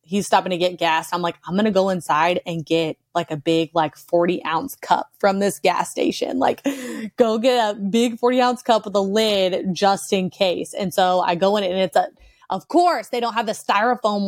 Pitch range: 175-205 Hz